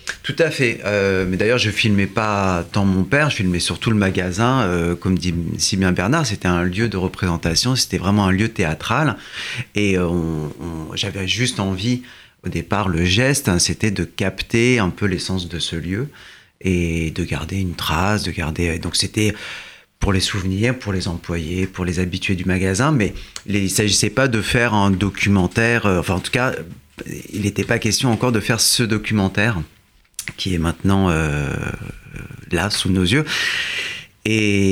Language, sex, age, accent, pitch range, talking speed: French, male, 30-49, French, 90-110 Hz, 185 wpm